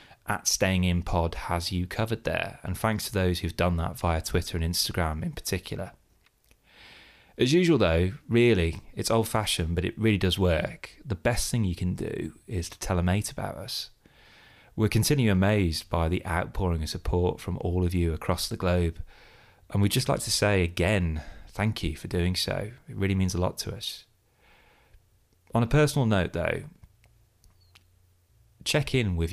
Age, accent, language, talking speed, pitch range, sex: 30-49, British, English, 180 wpm, 85-110 Hz, male